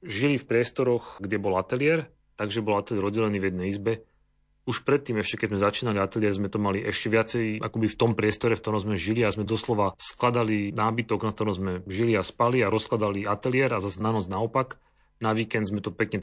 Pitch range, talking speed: 100-115 Hz, 210 wpm